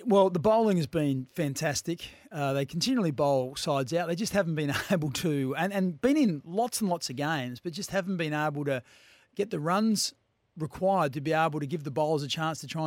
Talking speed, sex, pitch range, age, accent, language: 225 wpm, male, 140-175 Hz, 40-59, Australian, English